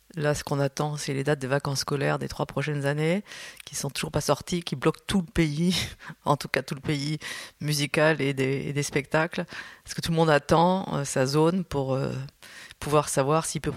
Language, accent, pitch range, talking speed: French, French, 140-165 Hz, 225 wpm